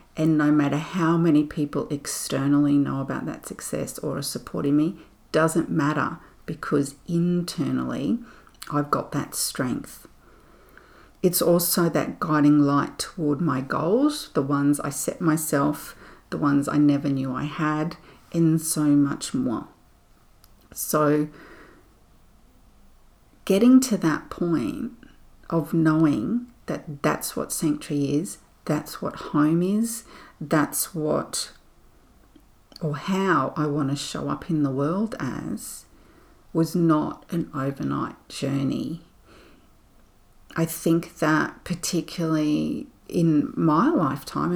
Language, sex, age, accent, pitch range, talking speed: English, female, 40-59, Australian, 145-165 Hz, 120 wpm